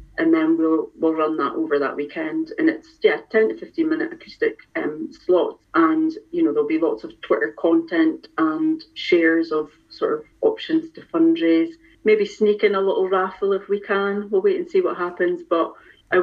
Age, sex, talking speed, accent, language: 40-59, female, 195 wpm, British, English